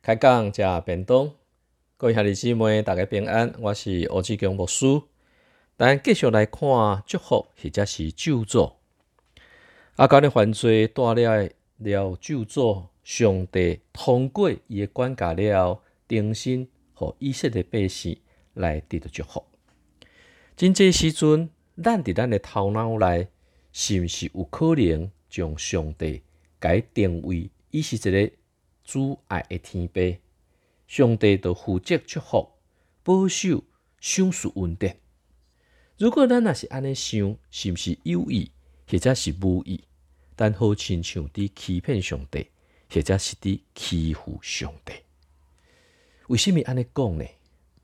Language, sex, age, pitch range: Chinese, male, 50-69, 85-120 Hz